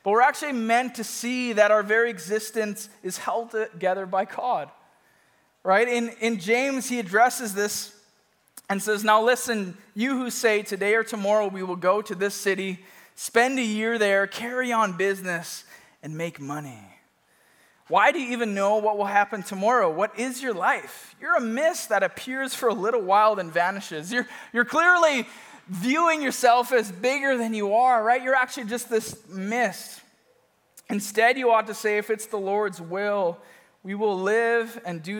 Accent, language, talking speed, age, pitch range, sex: American, English, 175 wpm, 20-39, 195-245 Hz, male